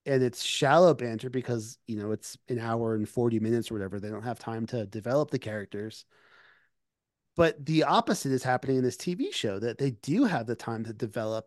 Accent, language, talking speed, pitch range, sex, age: American, English, 210 wpm, 115-145 Hz, male, 30-49